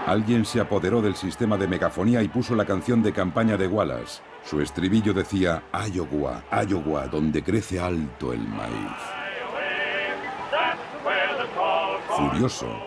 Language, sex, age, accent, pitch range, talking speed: Spanish, male, 50-69, Spanish, 85-110 Hz, 120 wpm